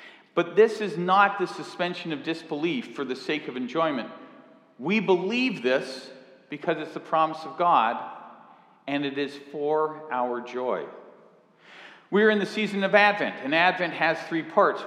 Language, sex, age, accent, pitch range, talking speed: English, male, 40-59, American, 140-195 Hz, 155 wpm